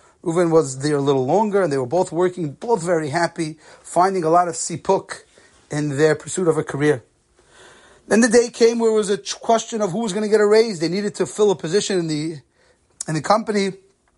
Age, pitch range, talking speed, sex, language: 30-49, 150-185 Hz, 225 wpm, male, English